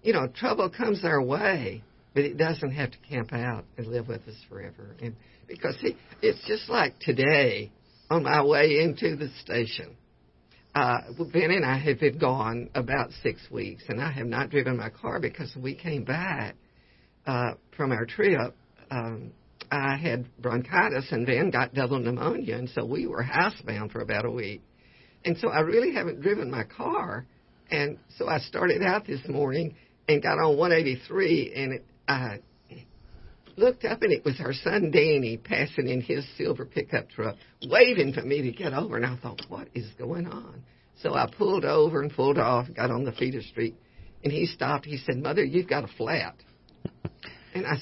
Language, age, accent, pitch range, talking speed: English, 60-79, American, 120-175 Hz, 185 wpm